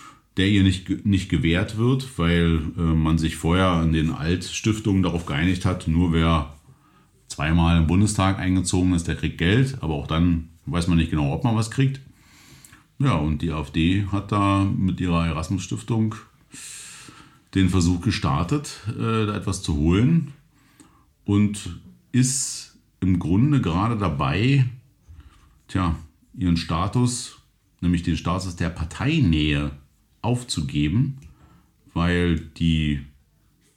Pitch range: 85-120 Hz